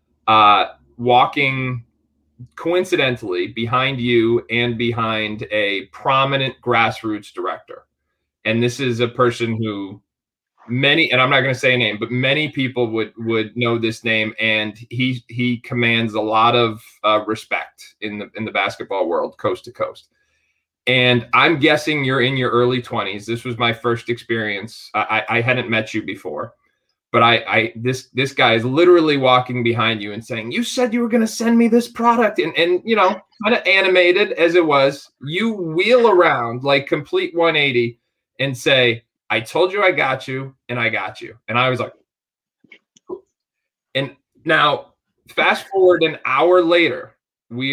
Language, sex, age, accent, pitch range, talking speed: English, male, 30-49, American, 115-145 Hz, 175 wpm